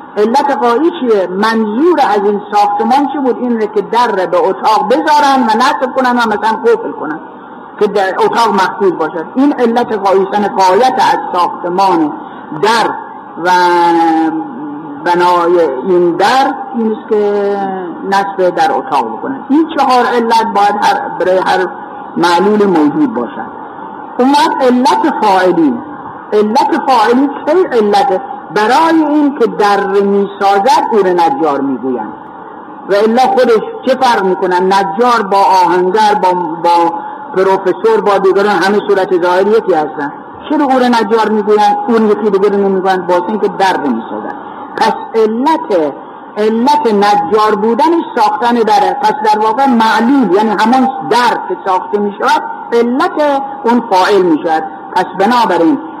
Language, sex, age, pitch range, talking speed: Persian, female, 50-69, 200-285 Hz, 135 wpm